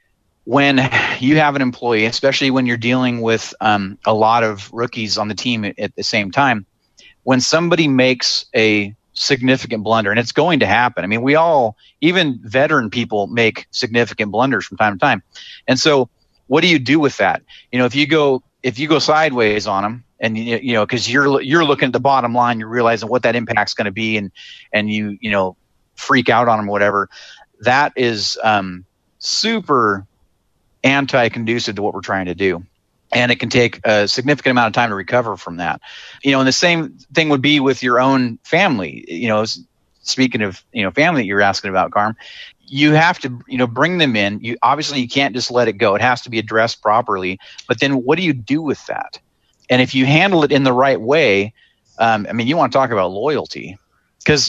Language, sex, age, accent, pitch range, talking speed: English, male, 30-49, American, 105-135 Hz, 215 wpm